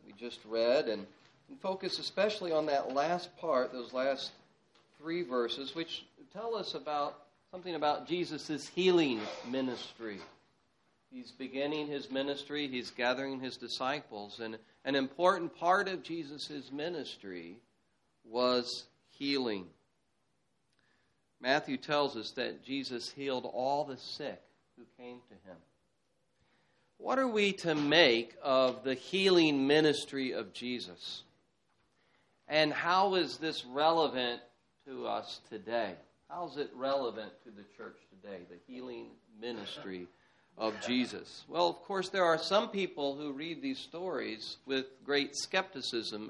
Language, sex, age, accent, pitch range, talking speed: English, male, 40-59, American, 125-165 Hz, 130 wpm